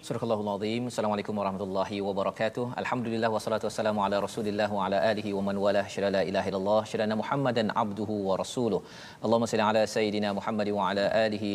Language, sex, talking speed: Malayalam, male, 170 wpm